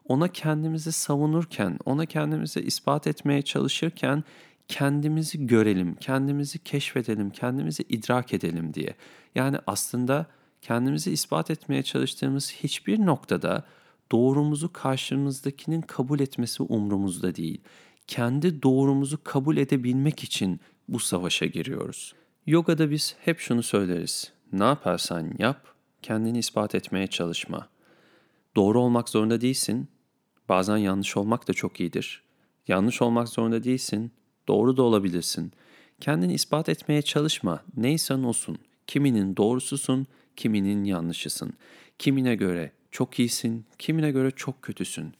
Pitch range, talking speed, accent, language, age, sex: 115-155 Hz, 115 wpm, native, Turkish, 40-59, male